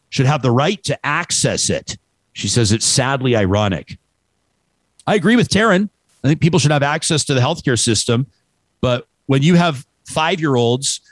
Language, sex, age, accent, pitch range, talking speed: English, male, 50-69, American, 125-185 Hz, 165 wpm